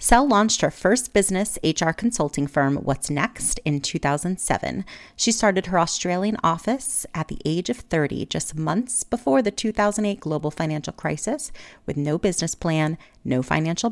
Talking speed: 155 wpm